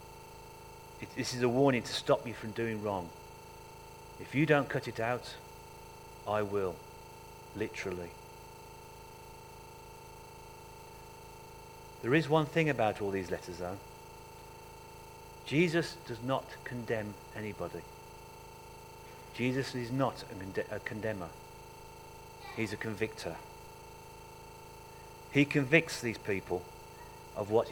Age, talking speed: 40-59, 105 wpm